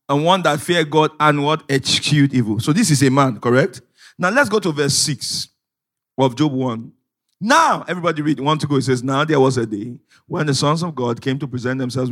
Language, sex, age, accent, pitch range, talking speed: English, male, 50-69, Nigerian, 125-165 Hz, 230 wpm